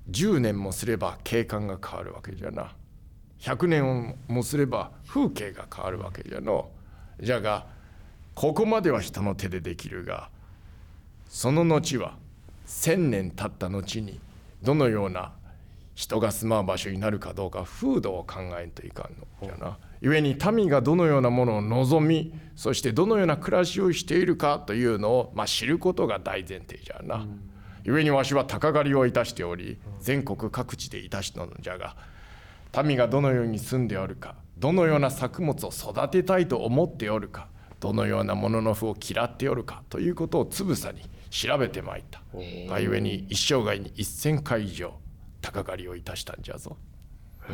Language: Japanese